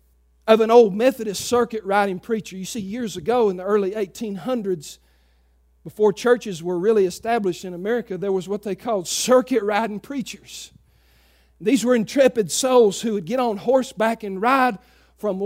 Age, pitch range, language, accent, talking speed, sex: 50-69, 175-230 Hz, English, American, 155 wpm, male